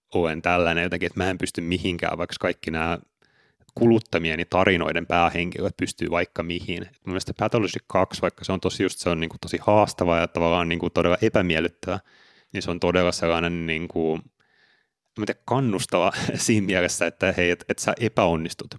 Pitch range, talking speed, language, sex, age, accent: 85-100 Hz, 145 wpm, Finnish, male, 30-49, native